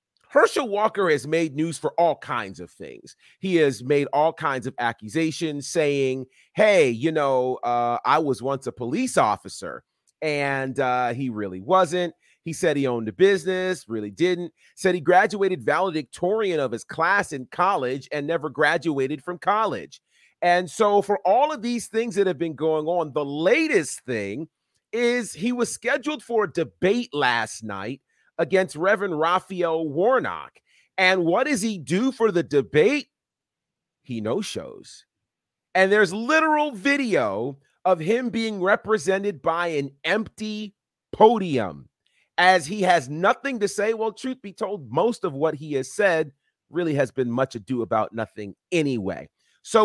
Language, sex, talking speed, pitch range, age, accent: English, male, 155 wpm, 140-210 Hz, 30-49, American